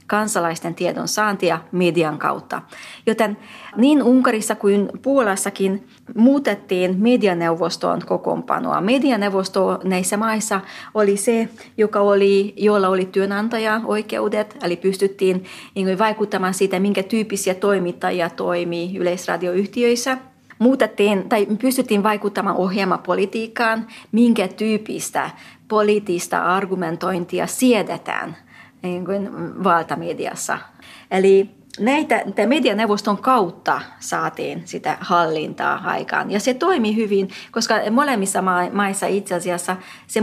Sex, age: female, 30-49